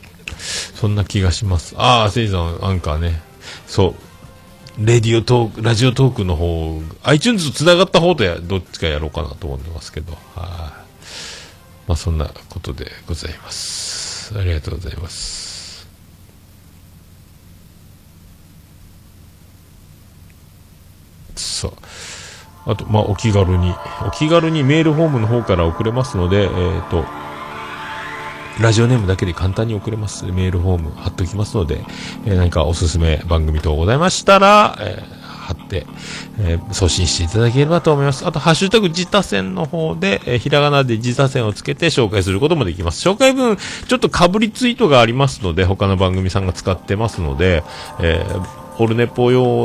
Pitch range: 85-115 Hz